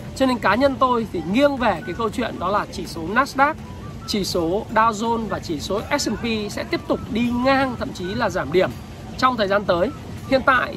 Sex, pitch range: male, 195-260 Hz